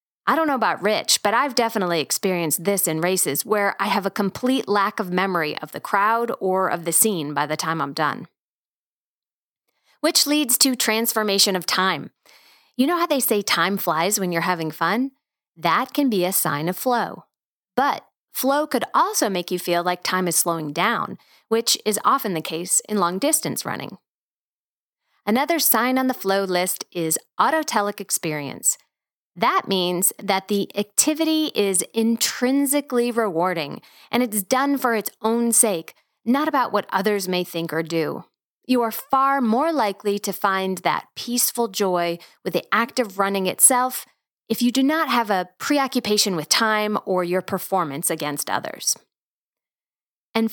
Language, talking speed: English, 165 wpm